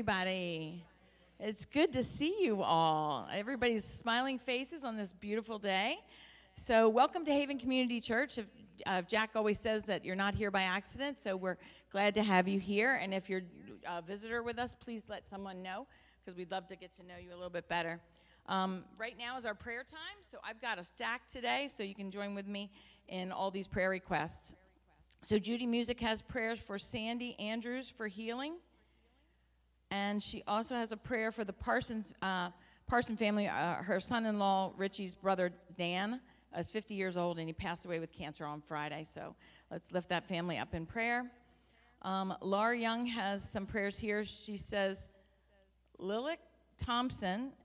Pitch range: 175-225 Hz